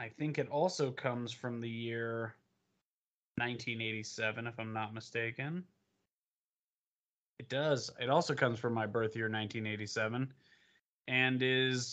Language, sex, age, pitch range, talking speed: English, male, 20-39, 125-175 Hz, 115 wpm